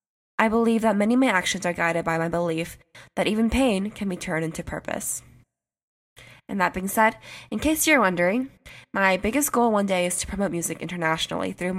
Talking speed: 200 wpm